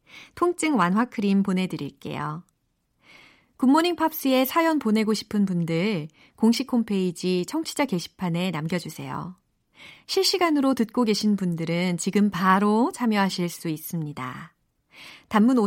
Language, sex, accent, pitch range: Korean, female, native, 175-265 Hz